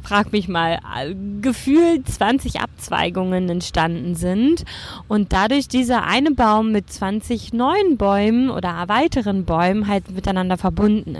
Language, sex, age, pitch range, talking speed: German, female, 20-39, 190-250 Hz, 125 wpm